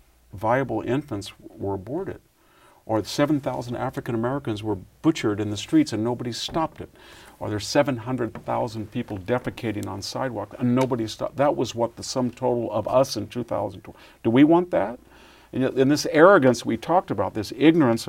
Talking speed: 160 wpm